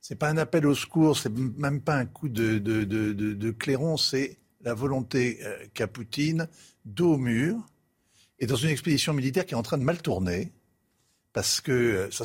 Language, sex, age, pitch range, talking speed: French, male, 60-79, 120-170 Hz, 210 wpm